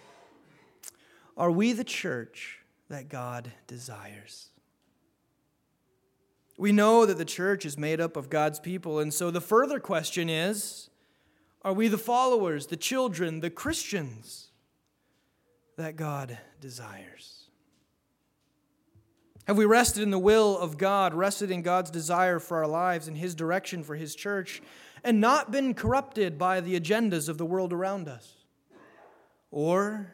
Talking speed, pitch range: 135 wpm, 150-205 Hz